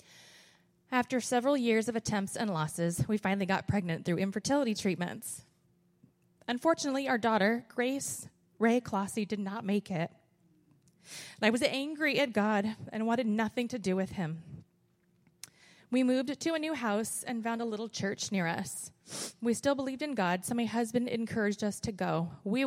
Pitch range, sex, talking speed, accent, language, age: 180-230 Hz, female, 165 wpm, American, English, 20-39